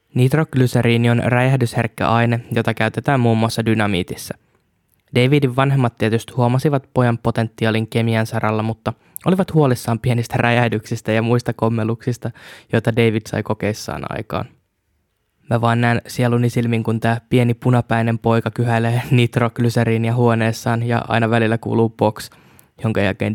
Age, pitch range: 20-39, 110-120 Hz